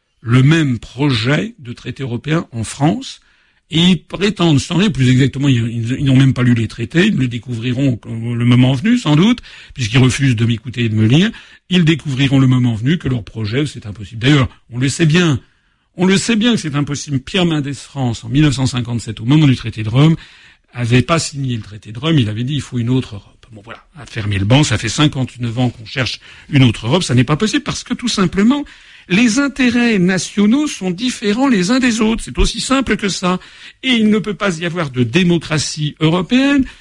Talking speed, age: 220 wpm, 60-79